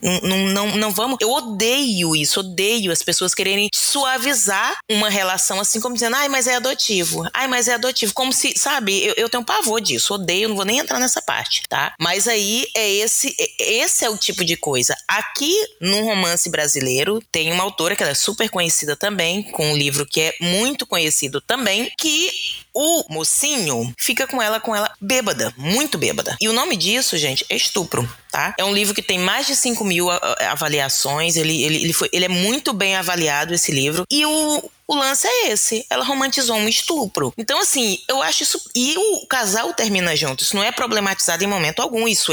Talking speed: 200 wpm